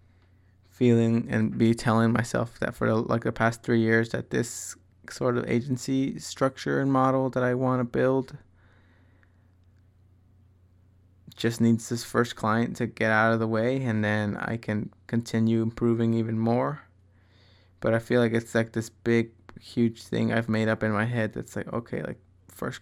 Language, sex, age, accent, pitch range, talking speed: English, male, 20-39, American, 95-120 Hz, 170 wpm